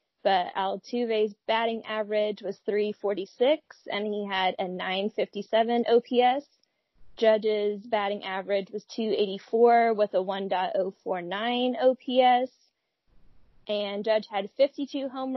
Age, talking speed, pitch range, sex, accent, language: 20-39, 100 wpm, 210-255 Hz, female, American, English